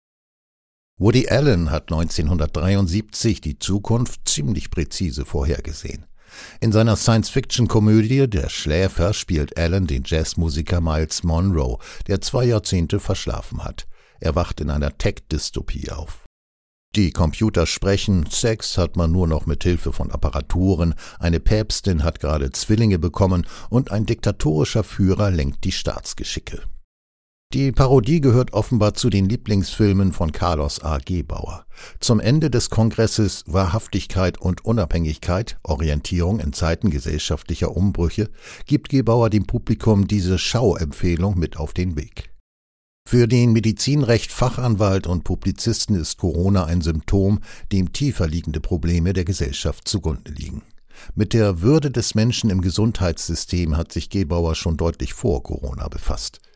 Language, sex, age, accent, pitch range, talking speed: German, male, 60-79, German, 80-110 Hz, 130 wpm